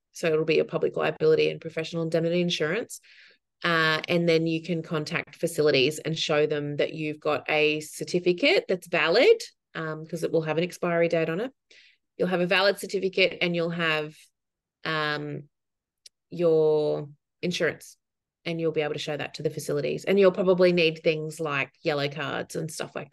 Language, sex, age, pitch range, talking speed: English, female, 30-49, 155-180 Hz, 180 wpm